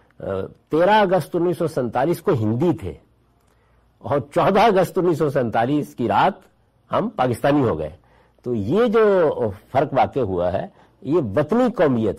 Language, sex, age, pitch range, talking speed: Urdu, male, 60-79, 100-165 Hz, 130 wpm